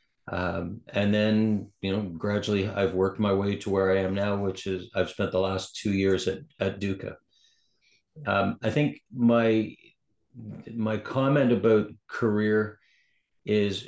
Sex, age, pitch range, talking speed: male, 50-69, 95-115 Hz, 150 wpm